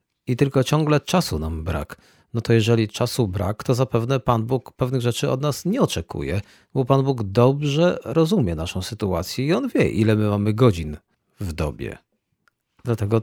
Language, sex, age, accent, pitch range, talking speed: Polish, male, 40-59, native, 95-130 Hz, 170 wpm